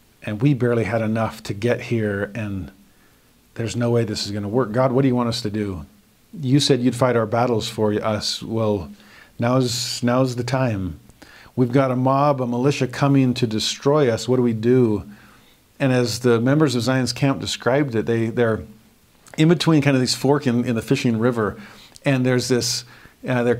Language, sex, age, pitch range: English, male, 50-69, 105-130 Hz